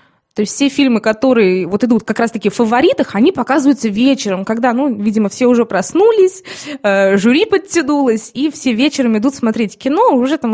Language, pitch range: Russian, 215-270 Hz